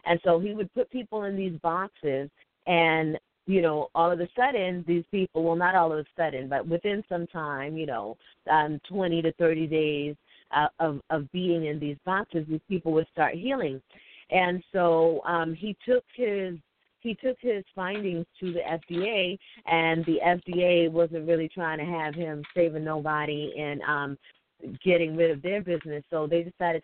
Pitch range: 160-190 Hz